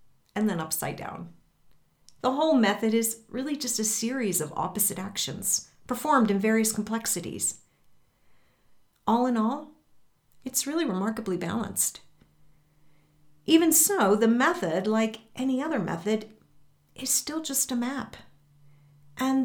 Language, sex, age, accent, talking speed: English, female, 50-69, American, 125 wpm